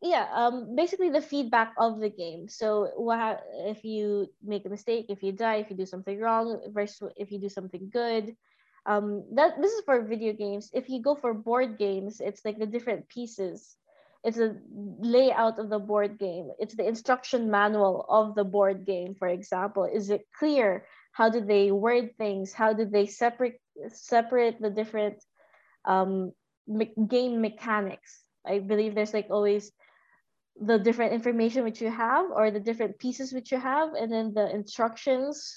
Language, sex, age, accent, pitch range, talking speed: English, female, 20-39, Filipino, 205-245 Hz, 175 wpm